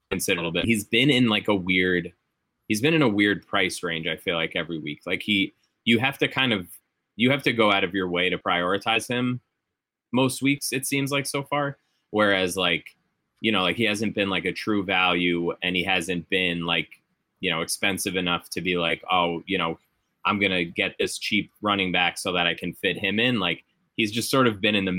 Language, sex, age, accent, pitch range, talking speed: English, male, 20-39, American, 90-105 Hz, 230 wpm